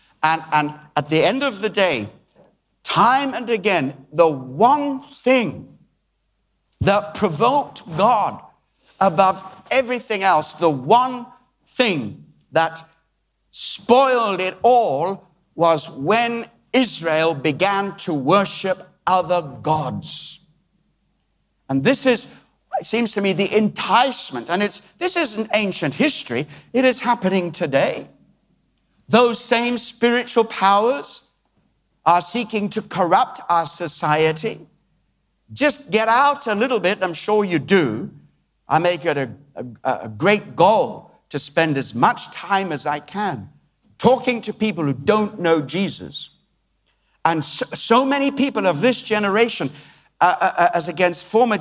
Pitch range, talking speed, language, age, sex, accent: 165-235 Hz, 130 wpm, English, 60-79, male, British